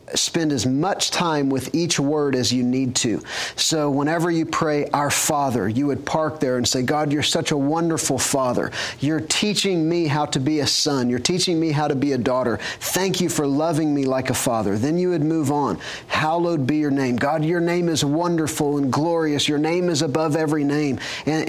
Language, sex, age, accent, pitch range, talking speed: English, male, 40-59, American, 135-165 Hz, 210 wpm